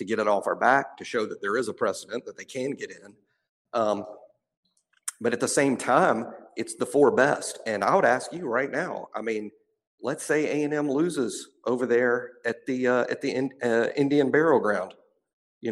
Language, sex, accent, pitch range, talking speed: English, male, American, 120-150 Hz, 205 wpm